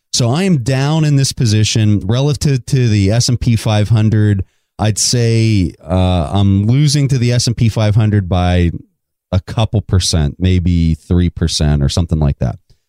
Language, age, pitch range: English, 30-49, 95-130 Hz